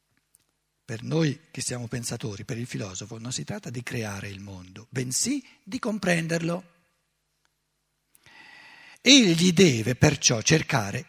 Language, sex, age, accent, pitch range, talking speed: Italian, male, 60-79, native, 130-180 Hz, 120 wpm